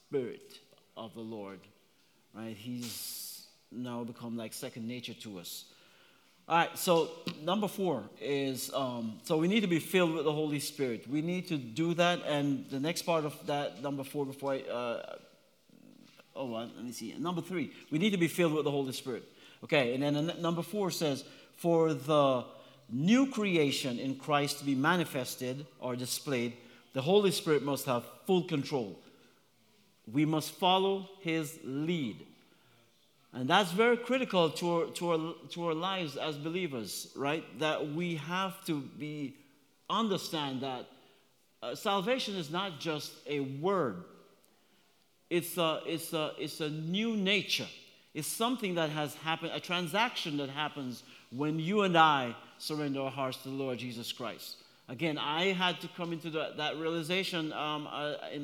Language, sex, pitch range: English, male, 135-175 Hz